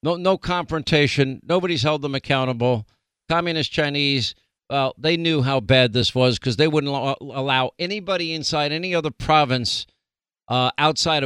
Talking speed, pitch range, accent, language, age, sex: 155 wpm, 130-165 Hz, American, English, 50-69, male